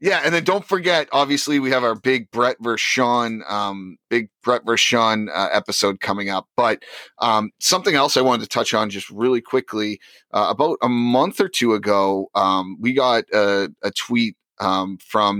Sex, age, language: male, 30-49, English